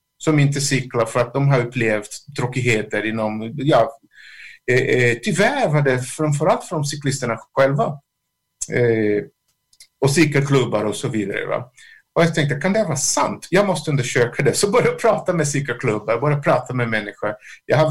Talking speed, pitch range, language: 175 wpm, 120-175 Hz, Swedish